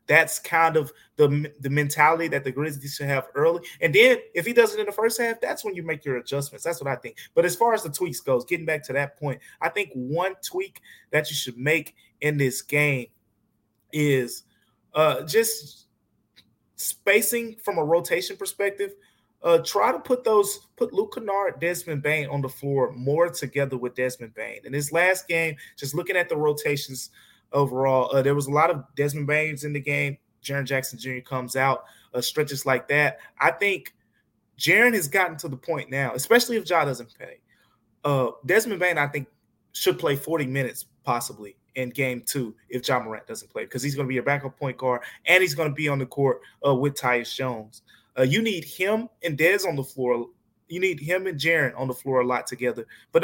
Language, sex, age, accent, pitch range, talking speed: English, male, 20-39, American, 130-180 Hz, 210 wpm